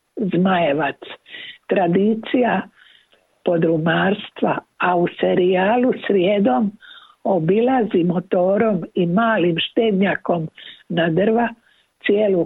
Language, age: Croatian, 60-79